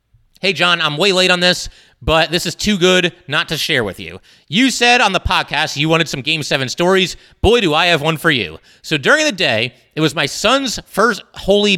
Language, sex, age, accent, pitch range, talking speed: English, male, 30-49, American, 145-200 Hz, 230 wpm